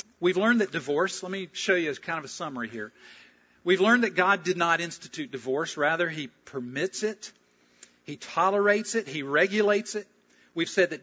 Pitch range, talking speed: 135-195 Hz, 185 wpm